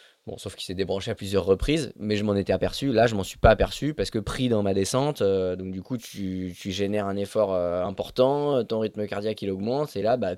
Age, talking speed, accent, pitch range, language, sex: 20-39, 255 wpm, French, 95-110 Hz, French, male